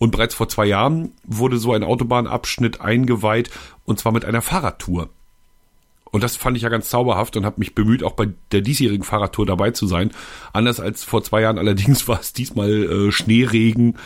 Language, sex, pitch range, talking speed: German, male, 100-120 Hz, 190 wpm